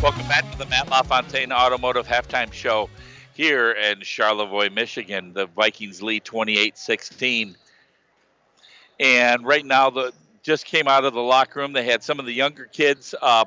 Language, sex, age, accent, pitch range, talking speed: English, male, 50-69, American, 125-160 Hz, 160 wpm